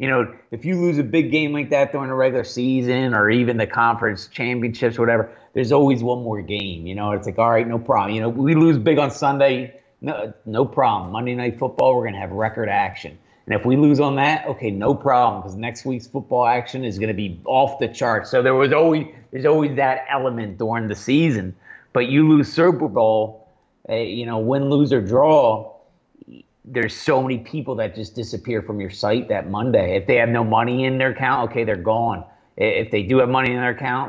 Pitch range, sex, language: 105-130 Hz, male, English